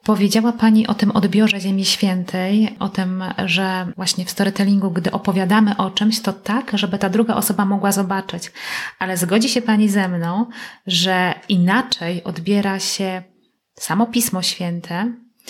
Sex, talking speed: female, 145 wpm